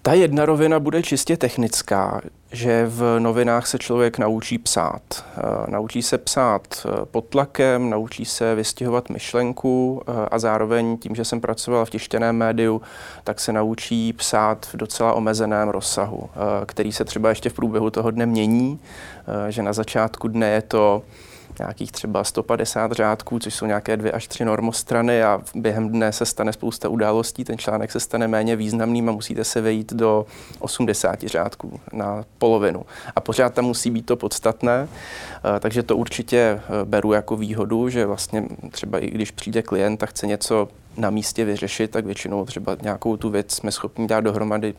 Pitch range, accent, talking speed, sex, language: 110-120 Hz, native, 165 wpm, male, Czech